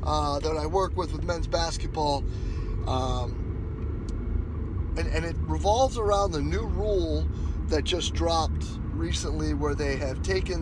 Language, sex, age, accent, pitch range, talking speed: English, male, 20-39, American, 75-85 Hz, 140 wpm